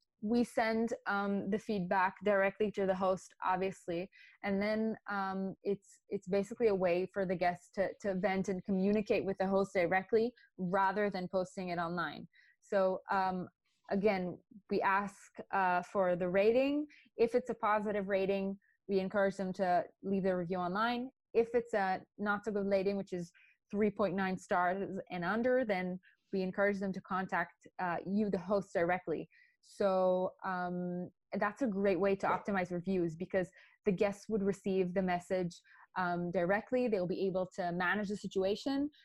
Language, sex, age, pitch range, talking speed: English, female, 20-39, 185-210 Hz, 160 wpm